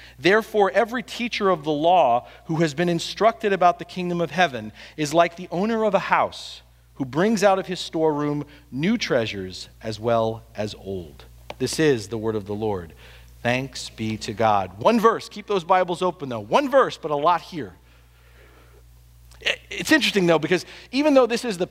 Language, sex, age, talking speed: English, male, 40-59, 185 wpm